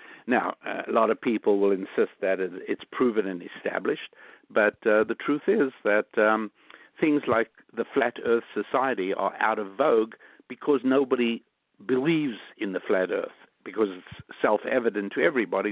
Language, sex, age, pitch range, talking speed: English, male, 60-79, 100-115 Hz, 155 wpm